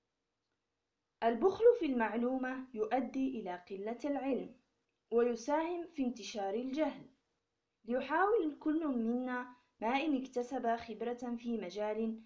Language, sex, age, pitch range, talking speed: Arabic, female, 20-39, 220-280 Hz, 100 wpm